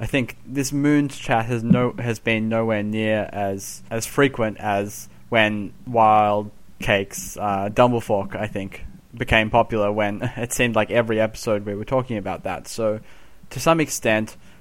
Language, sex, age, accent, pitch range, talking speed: English, male, 20-39, Australian, 105-125 Hz, 160 wpm